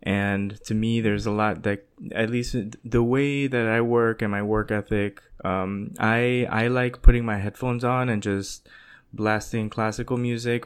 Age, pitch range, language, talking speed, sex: 20-39, 100-115 Hz, English, 175 wpm, male